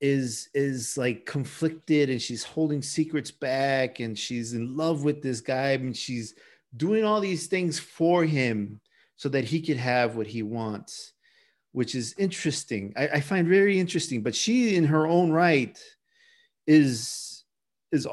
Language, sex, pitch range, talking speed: English, male, 125-200 Hz, 160 wpm